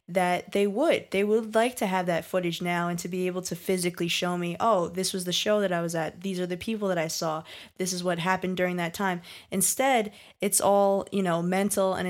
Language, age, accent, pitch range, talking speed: English, 20-39, American, 175-190 Hz, 245 wpm